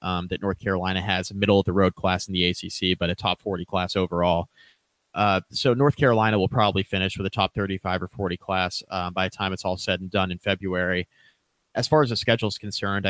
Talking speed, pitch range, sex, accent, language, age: 225 wpm, 95-105 Hz, male, American, English, 30-49